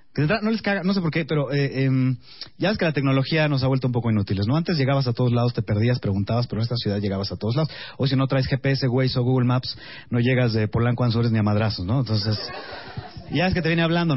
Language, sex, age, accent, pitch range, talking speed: Spanish, male, 30-49, Mexican, 125-175 Hz, 270 wpm